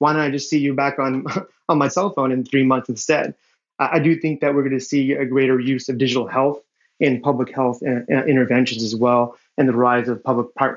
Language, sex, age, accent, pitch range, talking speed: English, male, 30-49, American, 125-140 Hz, 245 wpm